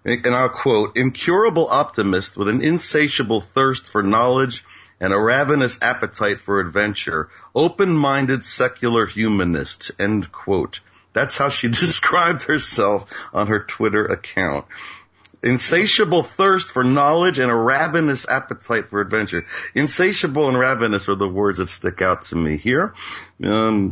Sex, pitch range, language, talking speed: male, 95-130 Hz, English, 135 wpm